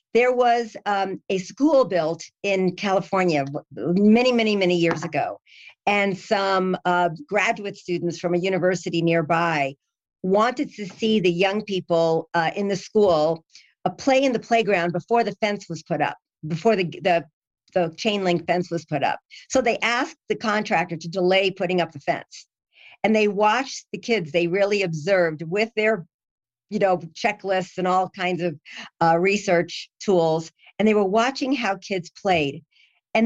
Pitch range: 170-220 Hz